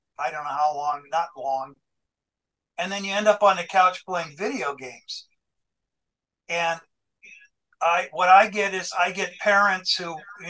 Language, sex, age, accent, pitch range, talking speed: English, male, 60-79, American, 155-195 Hz, 165 wpm